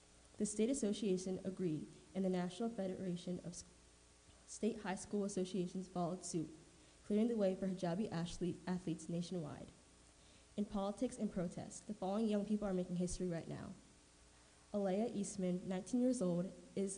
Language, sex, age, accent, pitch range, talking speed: English, female, 20-39, American, 175-200 Hz, 150 wpm